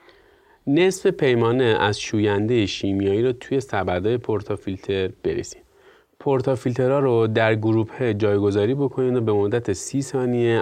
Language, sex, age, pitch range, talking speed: Persian, male, 30-49, 100-135 Hz, 120 wpm